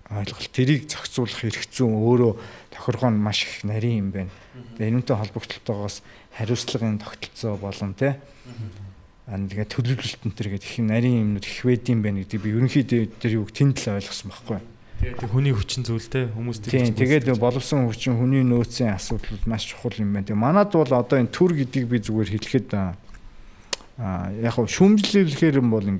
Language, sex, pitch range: Korean, male, 105-125 Hz